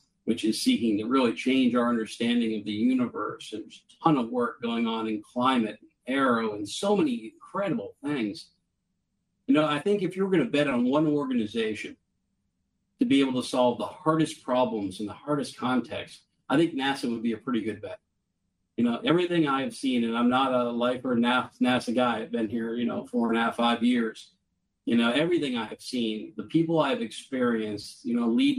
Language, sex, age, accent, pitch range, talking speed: English, male, 40-59, American, 115-155 Hz, 200 wpm